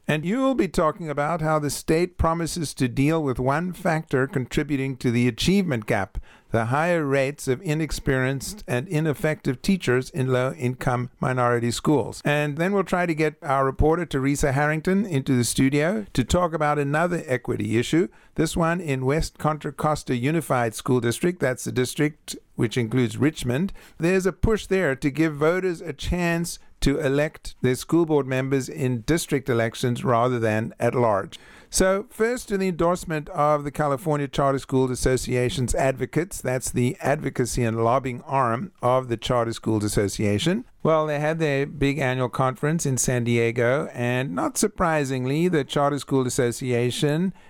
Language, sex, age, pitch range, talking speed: English, male, 50-69, 125-160 Hz, 160 wpm